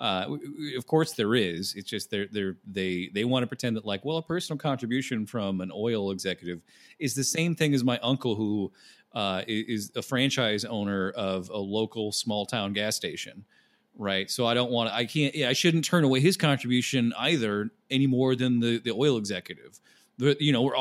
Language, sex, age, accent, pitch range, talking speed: English, male, 30-49, American, 105-135 Hz, 205 wpm